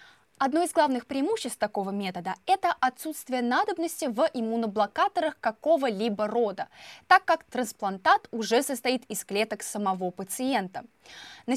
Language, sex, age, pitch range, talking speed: Russian, female, 20-39, 210-295 Hz, 120 wpm